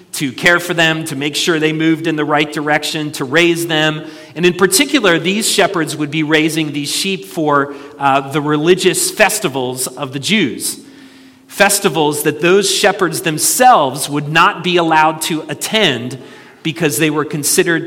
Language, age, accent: English, 40-59, American